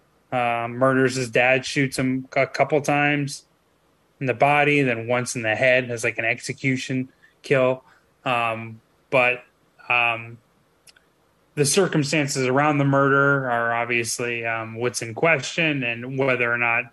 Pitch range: 120-140 Hz